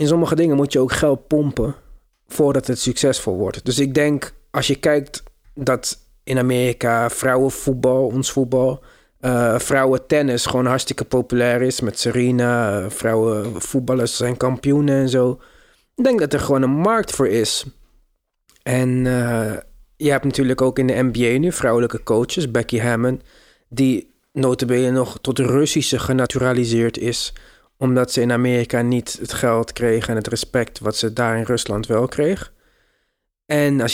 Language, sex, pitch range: Dutch, male, 120-135 Hz